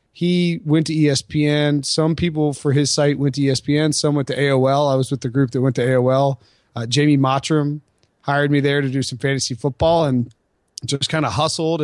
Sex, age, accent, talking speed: male, 30-49, American, 210 wpm